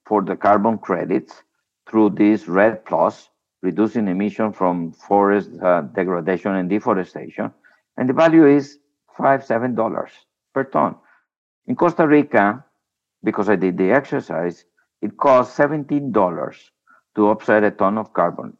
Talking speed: 140 wpm